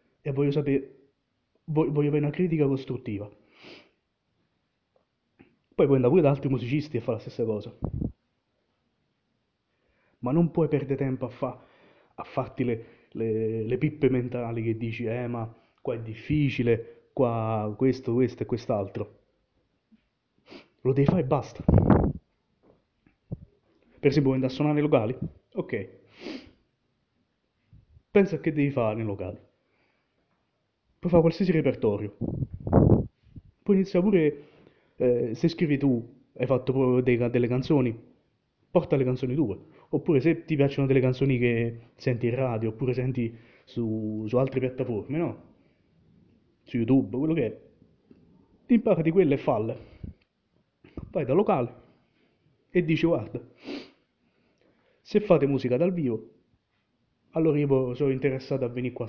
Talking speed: 130 wpm